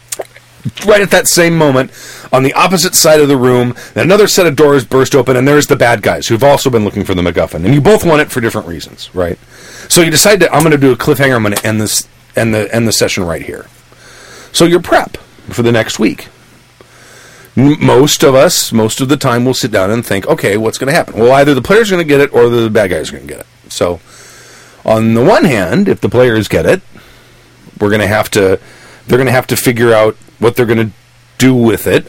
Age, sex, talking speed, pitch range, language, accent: 40-59, male, 245 wpm, 110-145 Hz, English, American